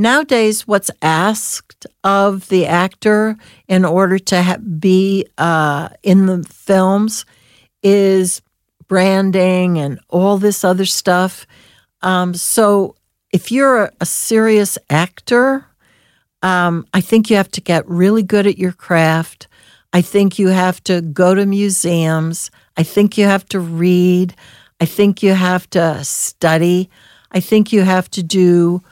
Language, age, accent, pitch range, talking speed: English, 60-79, American, 165-195 Hz, 140 wpm